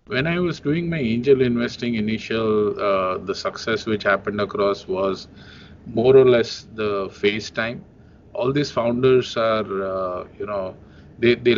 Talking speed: 150 wpm